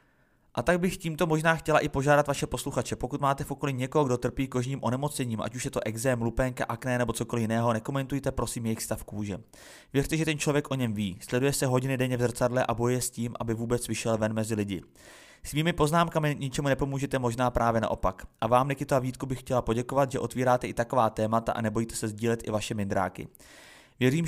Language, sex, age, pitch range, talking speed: Czech, male, 30-49, 110-135 Hz, 210 wpm